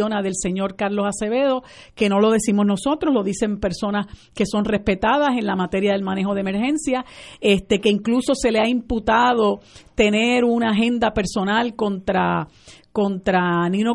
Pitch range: 200-245 Hz